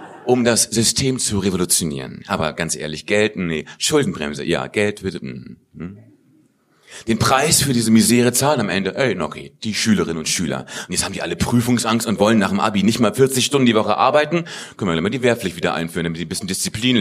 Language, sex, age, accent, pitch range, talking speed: German, male, 40-59, German, 95-135 Hz, 215 wpm